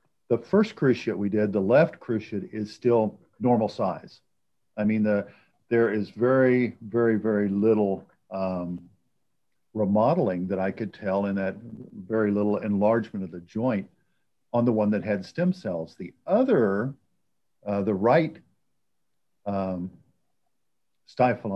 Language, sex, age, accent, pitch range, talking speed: English, male, 50-69, American, 100-120 Hz, 135 wpm